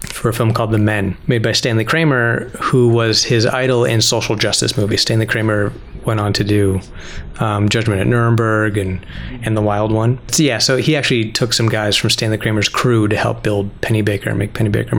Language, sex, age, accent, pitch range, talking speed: English, male, 30-49, American, 110-125 Hz, 215 wpm